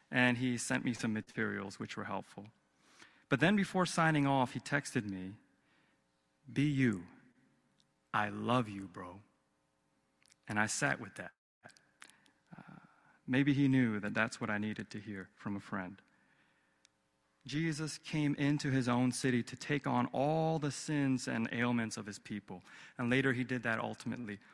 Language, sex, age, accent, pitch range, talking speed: English, male, 30-49, American, 105-140 Hz, 160 wpm